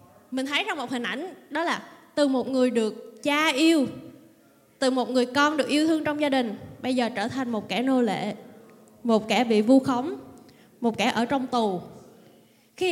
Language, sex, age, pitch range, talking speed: Vietnamese, female, 20-39, 240-320 Hz, 200 wpm